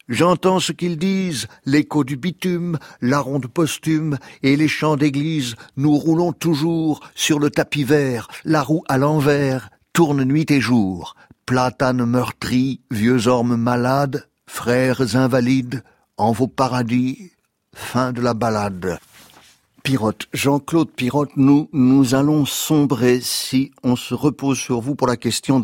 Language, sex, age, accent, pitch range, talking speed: French, male, 60-79, French, 125-150 Hz, 140 wpm